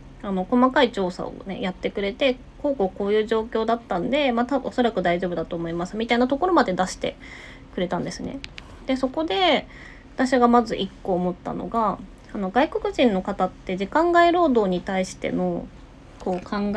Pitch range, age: 175-250 Hz, 20-39